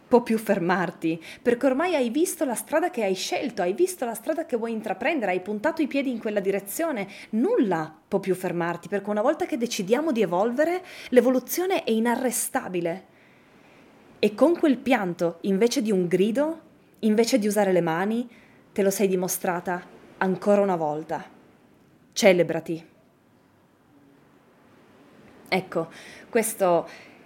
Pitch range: 170-235 Hz